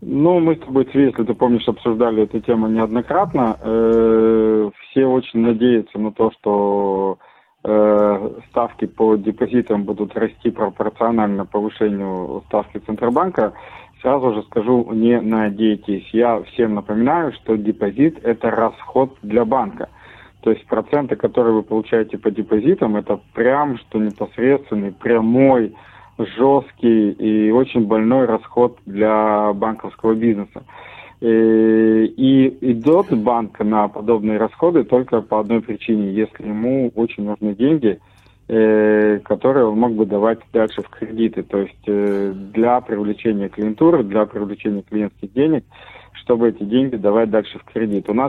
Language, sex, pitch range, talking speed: Russian, male, 105-120 Hz, 125 wpm